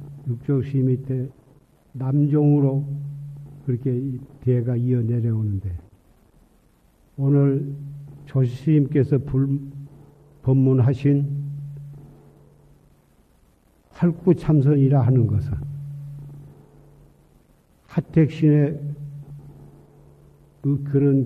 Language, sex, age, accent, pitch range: Korean, male, 50-69, native, 130-145 Hz